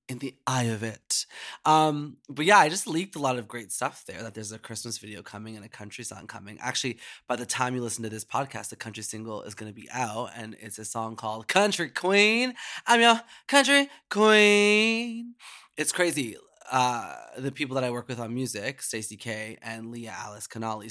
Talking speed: 210 wpm